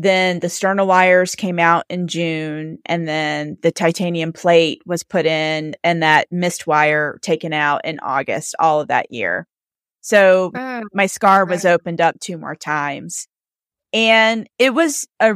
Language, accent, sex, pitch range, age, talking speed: English, American, female, 155-195 Hz, 30-49, 160 wpm